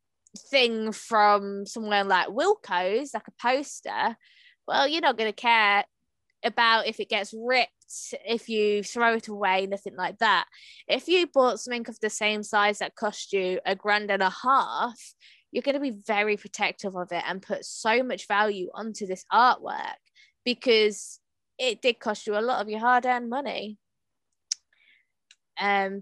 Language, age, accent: English, 20-39, British